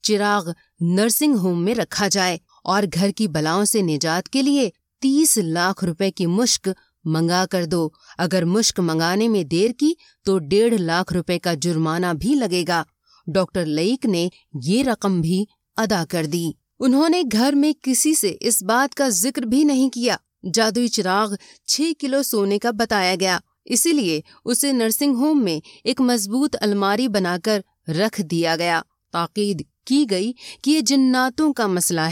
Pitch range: 180-255 Hz